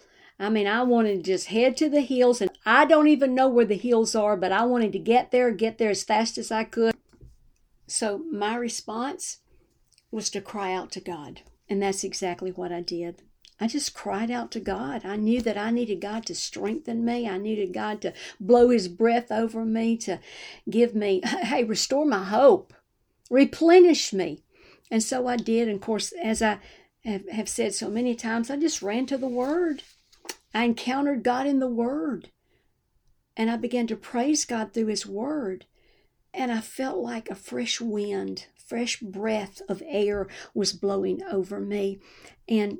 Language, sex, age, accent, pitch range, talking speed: English, female, 50-69, American, 200-245 Hz, 185 wpm